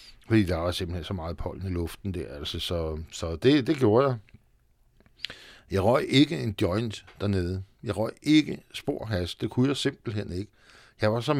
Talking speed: 190 wpm